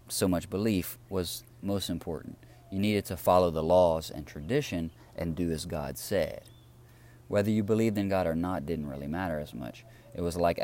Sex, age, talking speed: male, 30-49, 190 wpm